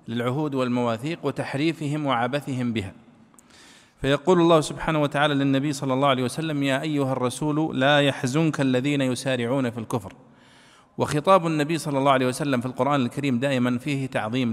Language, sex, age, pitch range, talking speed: Arabic, male, 40-59, 125-155 Hz, 145 wpm